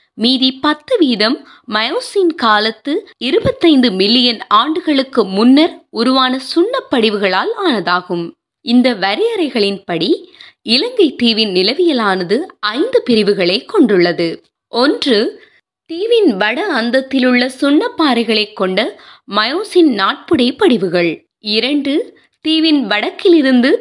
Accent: native